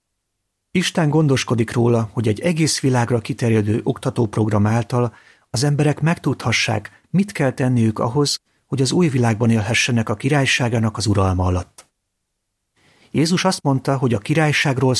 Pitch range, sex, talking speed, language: 105-140 Hz, male, 130 wpm, Hungarian